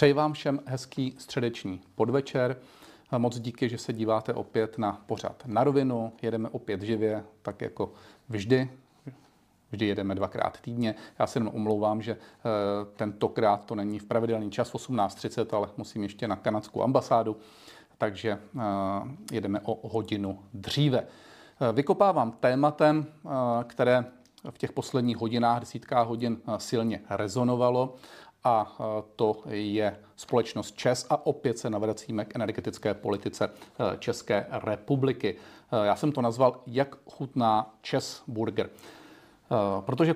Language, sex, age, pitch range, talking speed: Czech, male, 40-59, 110-130 Hz, 125 wpm